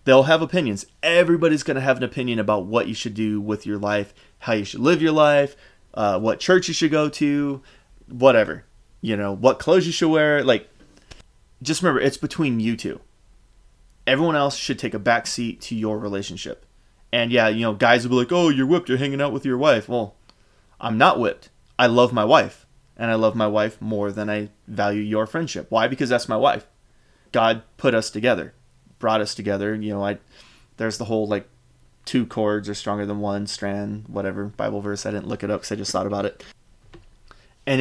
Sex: male